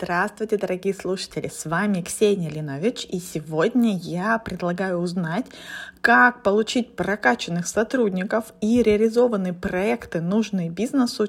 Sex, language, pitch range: female, Russian, 180-220 Hz